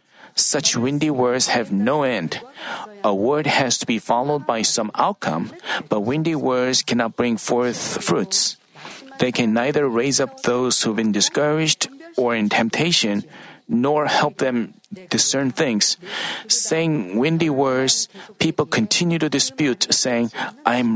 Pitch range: 125-160 Hz